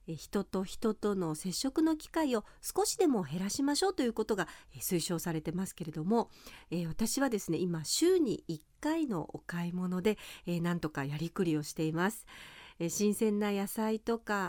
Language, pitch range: Japanese, 170-255 Hz